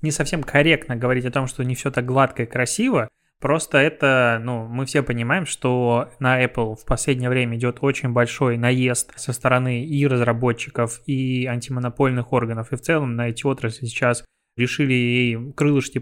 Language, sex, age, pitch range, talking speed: Russian, male, 20-39, 125-145 Hz, 170 wpm